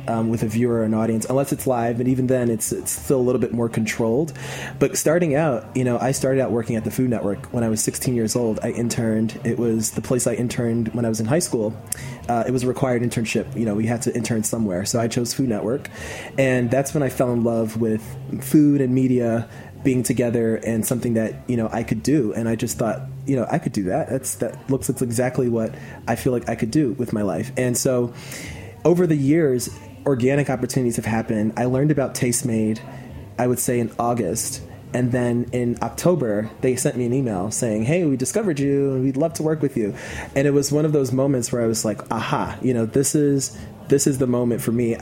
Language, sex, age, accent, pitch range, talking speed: English, male, 20-39, American, 115-130 Hz, 240 wpm